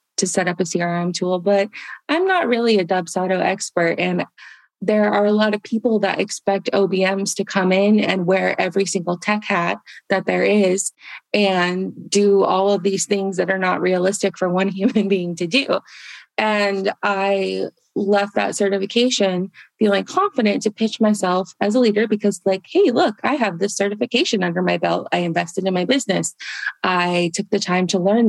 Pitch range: 185-215 Hz